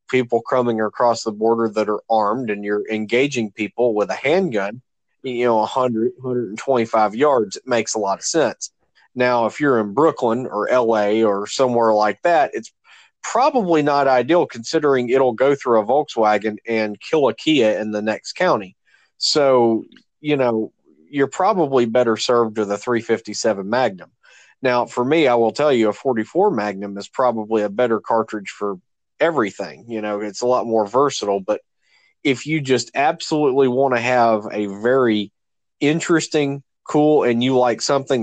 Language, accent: English, American